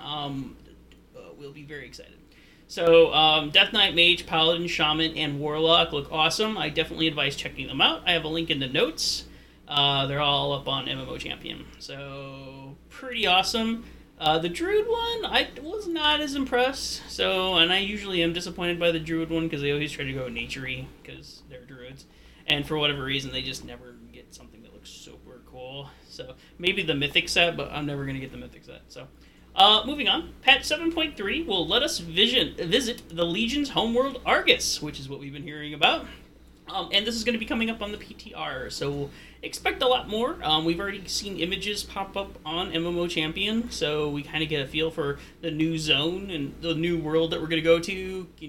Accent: American